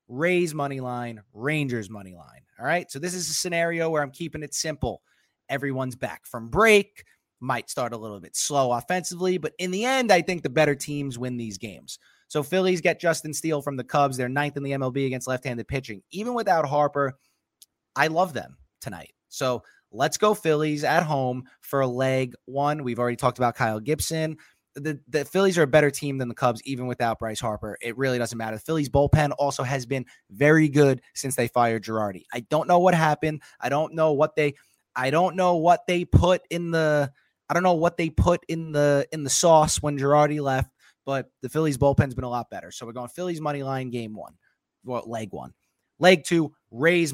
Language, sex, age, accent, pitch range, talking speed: English, male, 20-39, American, 125-160 Hz, 205 wpm